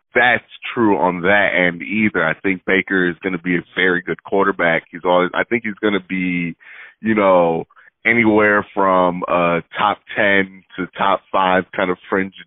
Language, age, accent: English, 30-49, American